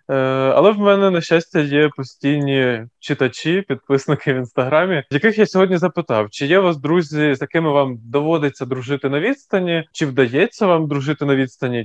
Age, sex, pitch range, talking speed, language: 20-39, male, 130-165 Hz, 165 wpm, Ukrainian